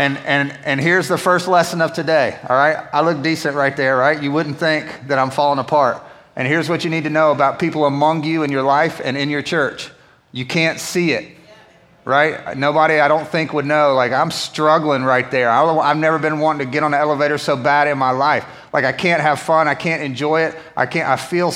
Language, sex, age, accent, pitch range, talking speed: English, male, 30-49, American, 140-160 Hz, 240 wpm